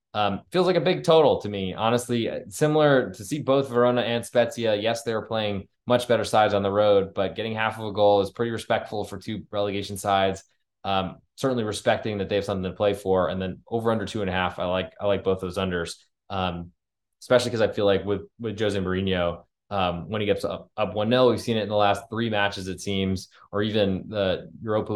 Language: English